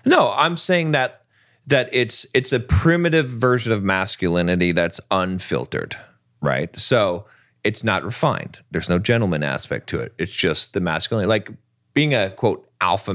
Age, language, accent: 30-49, English, American